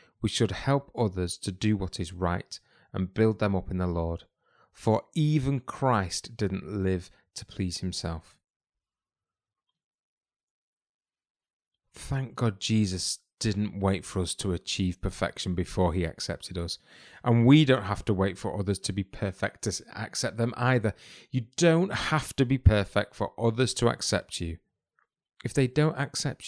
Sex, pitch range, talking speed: male, 95-120 Hz, 155 wpm